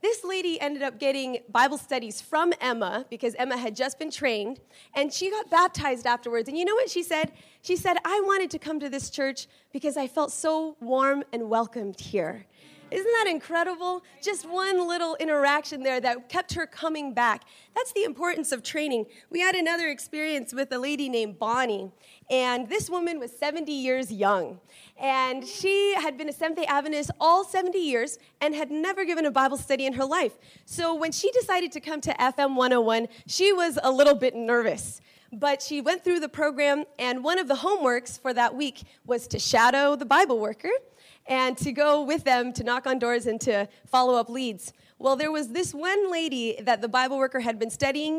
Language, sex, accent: English, female, American